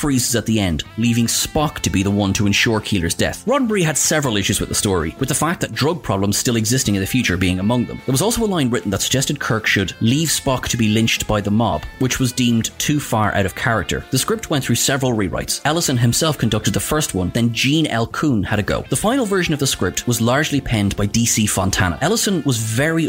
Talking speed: 245 wpm